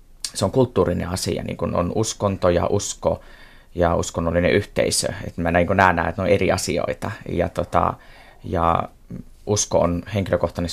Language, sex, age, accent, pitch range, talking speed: Finnish, male, 20-39, native, 85-95 Hz, 140 wpm